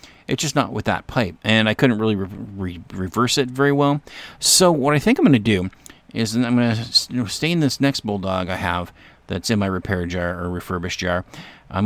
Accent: American